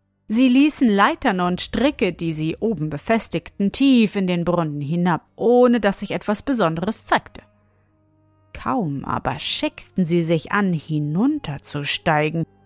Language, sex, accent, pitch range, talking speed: German, female, German, 160-250 Hz, 130 wpm